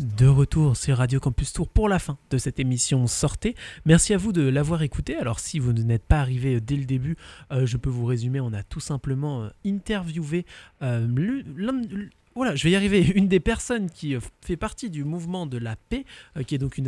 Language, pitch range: French, 130-175 Hz